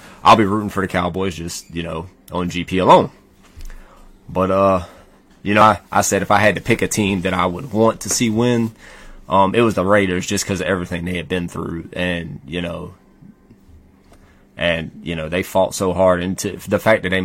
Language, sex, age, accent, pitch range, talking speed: English, male, 20-39, American, 90-105 Hz, 215 wpm